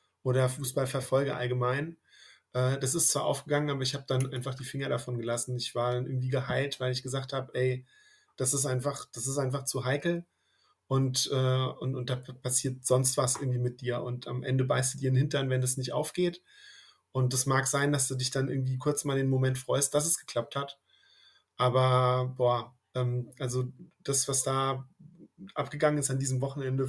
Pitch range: 130-145 Hz